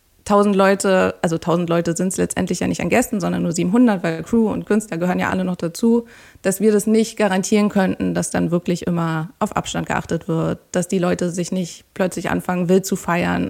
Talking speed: 215 wpm